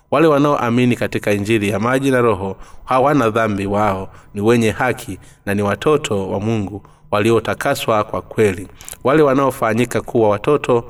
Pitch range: 105-130 Hz